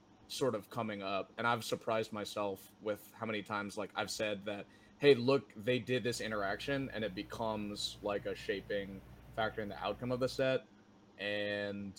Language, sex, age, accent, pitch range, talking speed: English, male, 20-39, American, 100-120 Hz, 180 wpm